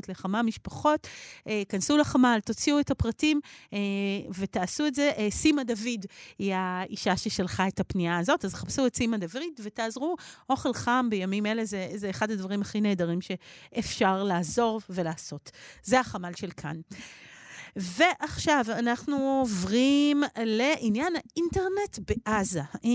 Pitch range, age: 195-280 Hz, 40-59